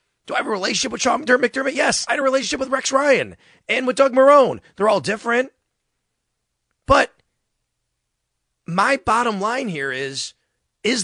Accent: American